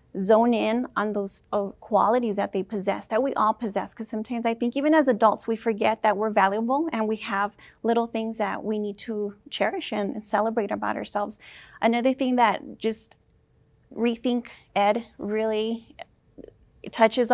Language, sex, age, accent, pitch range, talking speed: English, female, 30-49, American, 210-235 Hz, 165 wpm